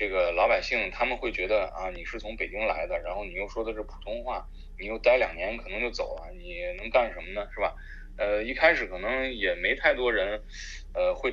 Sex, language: male, Chinese